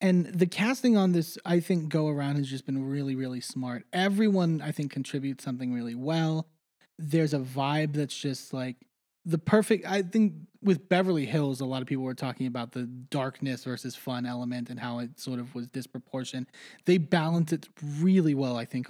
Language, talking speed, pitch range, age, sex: English, 195 wpm, 135-170 Hz, 20-39, male